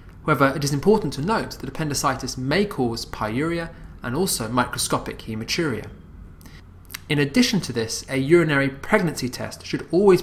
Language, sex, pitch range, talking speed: English, male, 105-145 Hz, 145 wpm